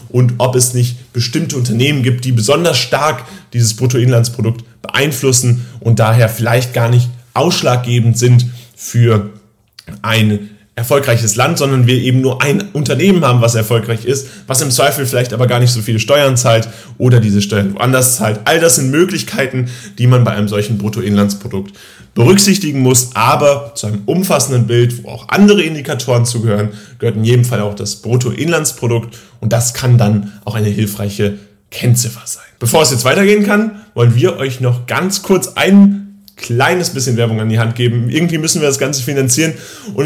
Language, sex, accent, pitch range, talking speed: German, male, German, 115-155 Hz, 170 wpm